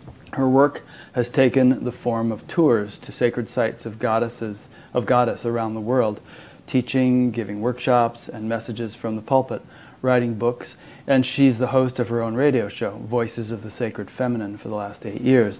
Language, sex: English, male